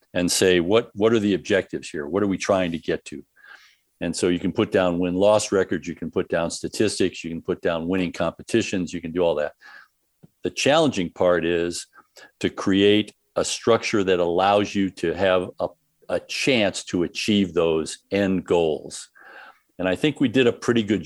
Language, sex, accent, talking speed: English, male, American, 195 wpm